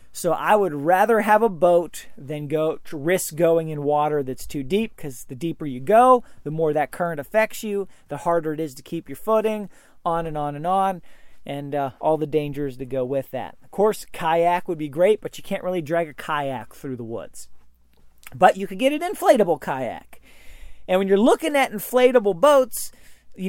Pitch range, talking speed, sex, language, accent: 155-215 Hz, 205 wpm, male, English, American